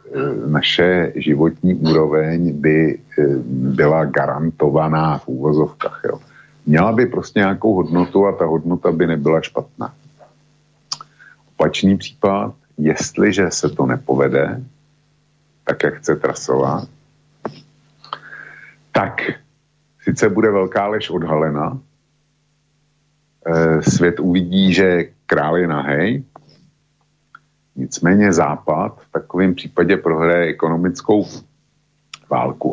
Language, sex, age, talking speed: Slovak, male, 50-69, 90 wpm